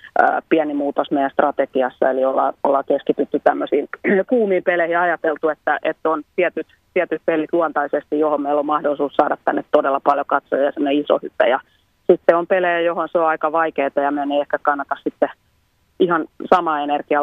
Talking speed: 175 wpm